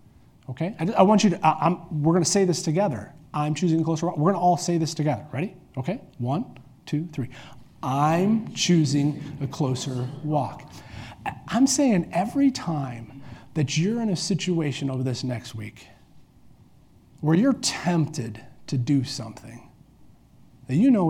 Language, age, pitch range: English, 40-59, 125-170 Hz